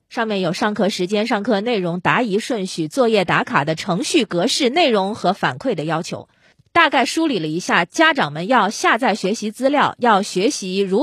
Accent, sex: native, female